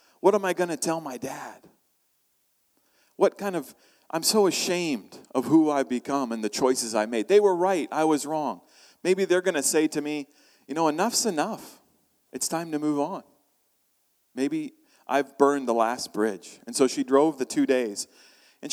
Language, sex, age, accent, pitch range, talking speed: English, male, 40-59, American, 125-160 Hz, 190 wpm